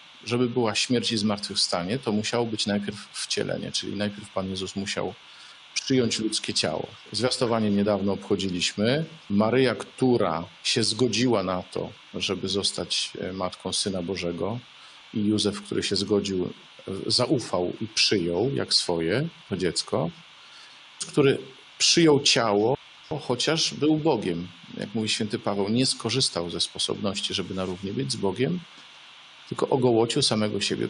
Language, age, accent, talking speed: Polish, 40-59, native, 130 wpm